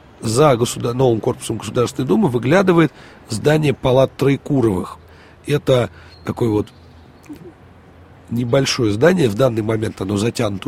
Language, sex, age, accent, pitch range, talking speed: Russian, male, 40-59, native, 100-130 Hz, 105 wpm